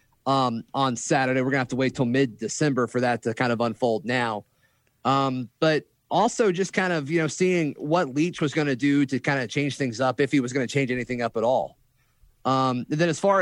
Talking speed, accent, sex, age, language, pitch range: 235 wpm, American, male, 30-49, English, 125-155 Hz